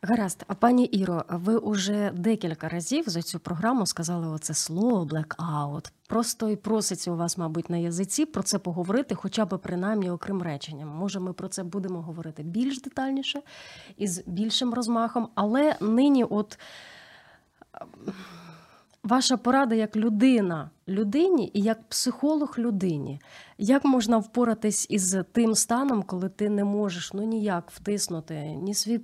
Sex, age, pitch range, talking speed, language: female, 30-49, 185-235 Hz, 145 wpm, Ukrainian